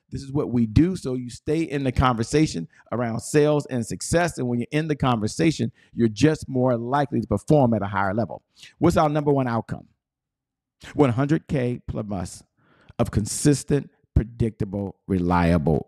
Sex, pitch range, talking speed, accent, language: male, 115-160 Hz, 160 wpm, American, English